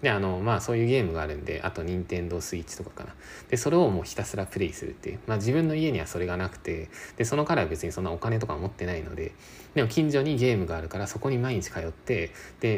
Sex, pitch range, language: male, 85-130 Hz, Japanese